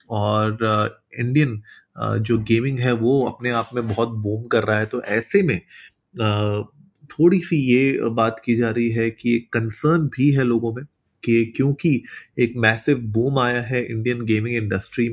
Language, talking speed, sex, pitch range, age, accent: Hindi, 165 wpm, male, 105-125 Hz, 30-49, native